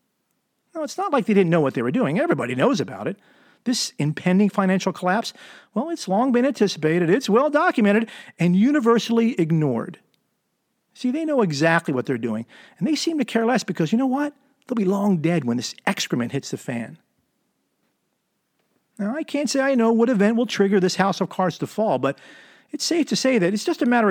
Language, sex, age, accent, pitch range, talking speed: English, male, 40-59, American, 175-250 Hz, 200 wpm